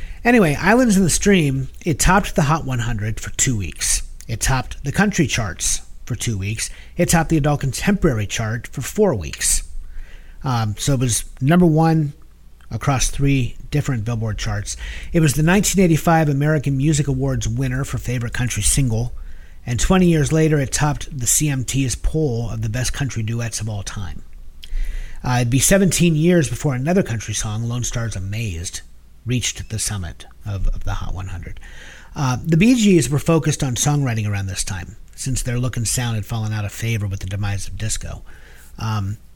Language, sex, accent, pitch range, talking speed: English, male, American, 100-145 Hz, 180 wpm